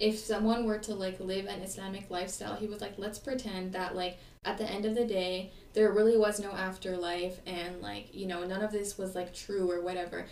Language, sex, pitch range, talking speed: English, female, 190-215 Hz, 225 wpm